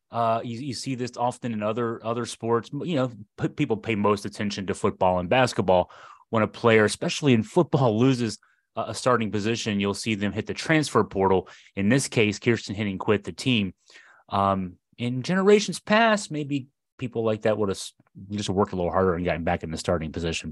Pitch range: 95-115 Hz